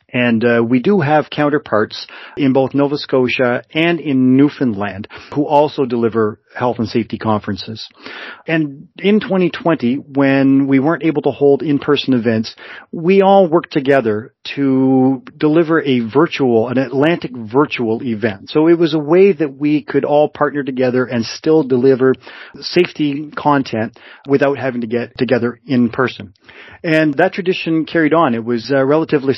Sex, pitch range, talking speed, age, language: male, 120-145 Hz, 155 wpm, 40-59, English